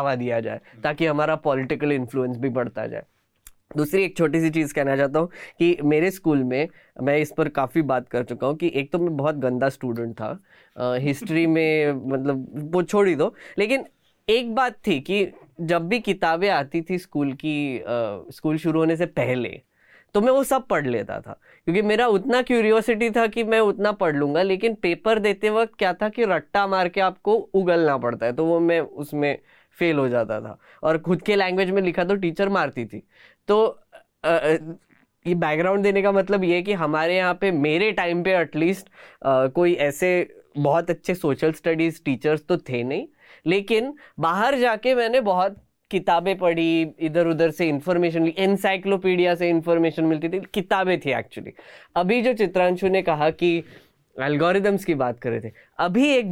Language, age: Hindi, 10-29